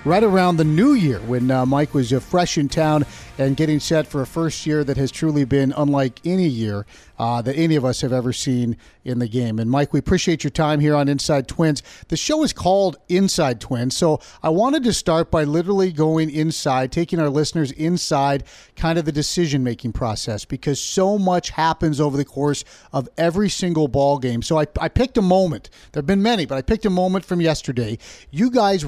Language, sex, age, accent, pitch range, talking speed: English, male, 40-59, American, 135-170 Hz, 215 wpm